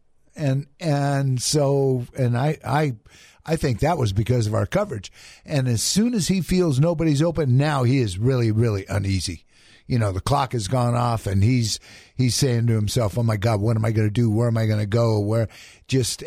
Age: 50-69